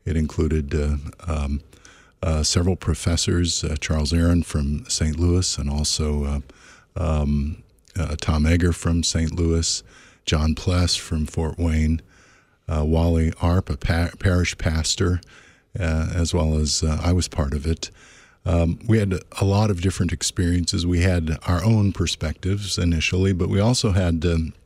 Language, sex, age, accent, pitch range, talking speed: English, male, 50-69, American, 80-95 Hz, 155 wpm